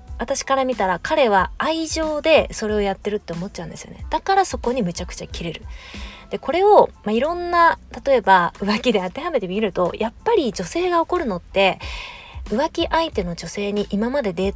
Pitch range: 200-300 Hz